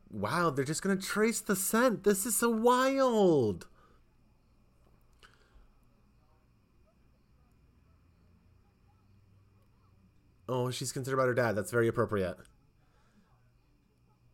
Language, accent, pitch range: English, American, 100-120 Hz